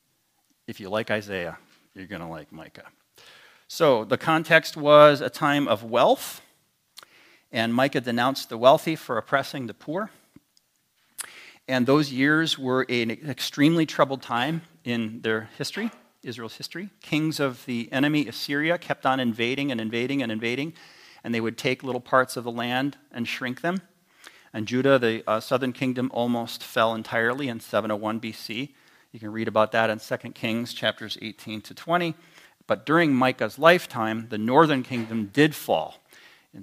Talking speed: 155 wpm